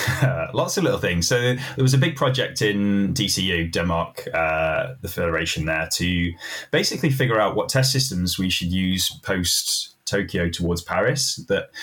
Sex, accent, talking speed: male, British, 160 wpm